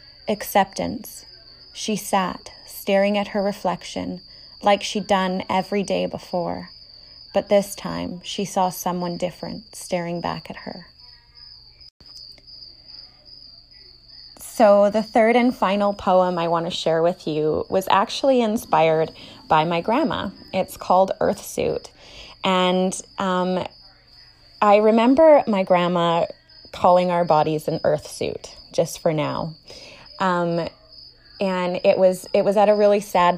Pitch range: 170-200 Hz